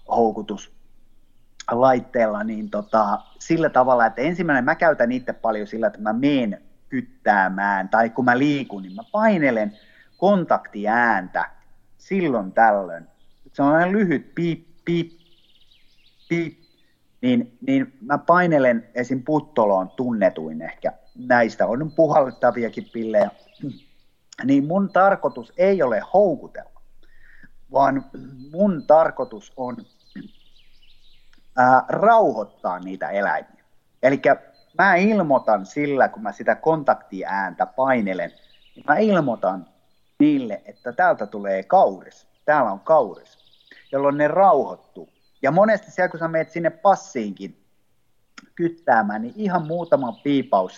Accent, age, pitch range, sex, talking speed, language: native, 30-49, 120-180 Hz, male, 110 wpm, Finnish